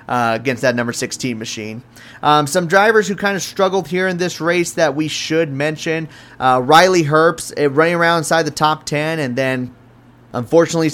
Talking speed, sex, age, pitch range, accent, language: 185 wpm, male, 30-49, 130-170 Hz, American, English